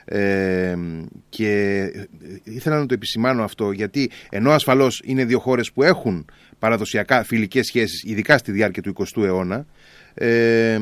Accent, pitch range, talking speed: native, 105-135 Hz, 140 wpm